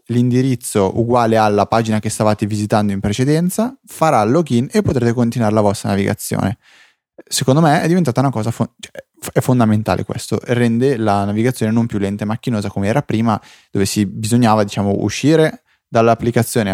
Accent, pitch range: native, 105-125 Hz